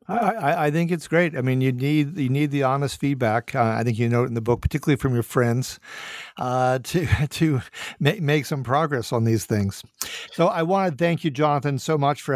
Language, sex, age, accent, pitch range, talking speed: English, male, 50-69, American, 125-155 Hz, 230 wpm